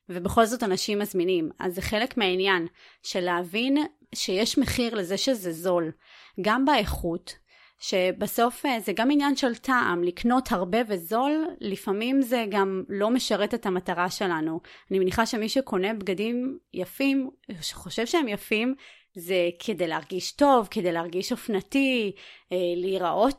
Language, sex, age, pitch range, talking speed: Hebrew, female, 30-49, 185-230 Hz, 130 wpm